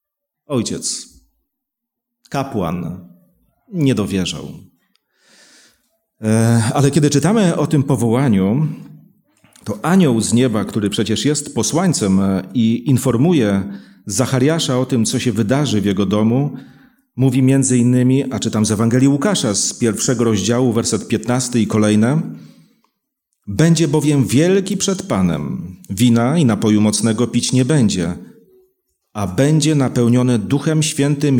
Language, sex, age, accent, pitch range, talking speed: Polish, male, 40-59, native, 110-155 Hz, 115 wpm